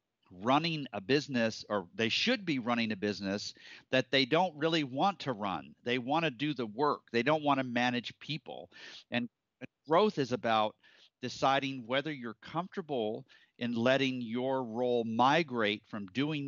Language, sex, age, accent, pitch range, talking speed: English, male, 50-69, American, 110-140 Hz, 160 wpm